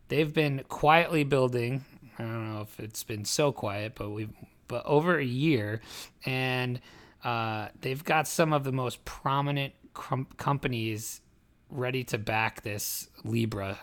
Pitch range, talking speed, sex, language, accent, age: 115-140 Hz, 150 wpm, male, English, American, 30-49